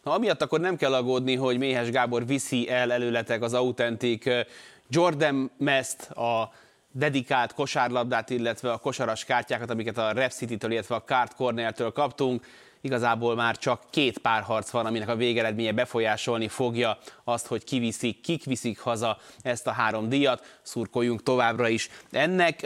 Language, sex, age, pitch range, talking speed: Hungarian, male, 20-39, 115-130 Hz, 150 wpm